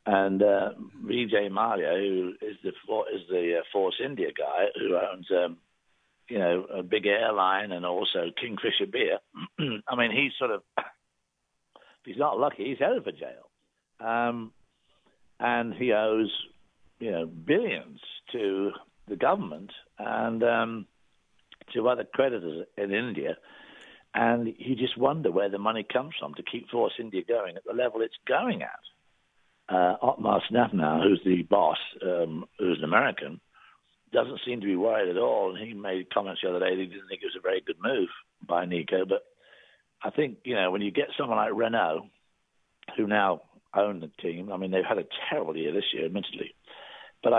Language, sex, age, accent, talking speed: English, male, 60-79, British, 175 wpm